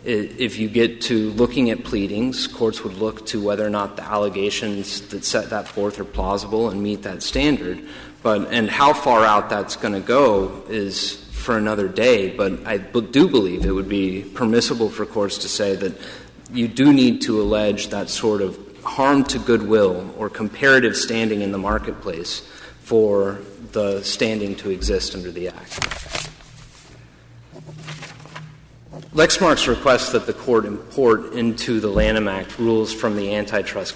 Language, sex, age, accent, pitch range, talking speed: English, male, 30-49, American, 100-125 Hz, 160 wpm